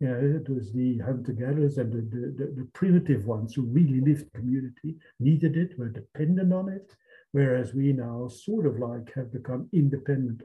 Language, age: English, 60-79